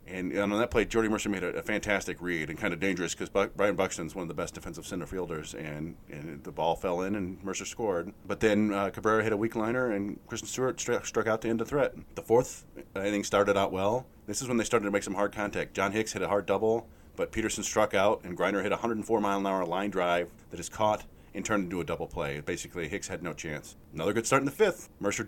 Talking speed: 255 wpm